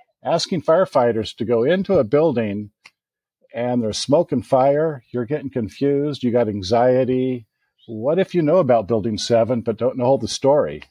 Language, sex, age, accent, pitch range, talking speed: English, male, 50-69, American, 110-135 Hz, 165 wpm